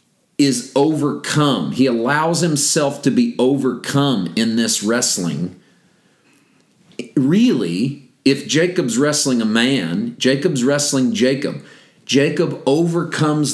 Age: 40-59